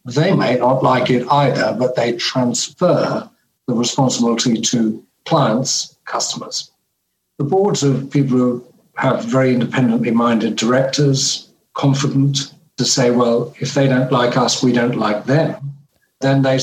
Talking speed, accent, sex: 140 wpm, British, male